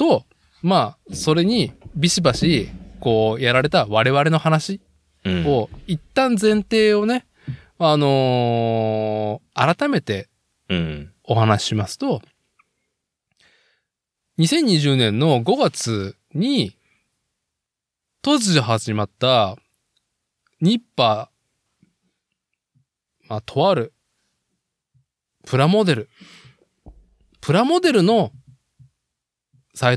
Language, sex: Japanese, male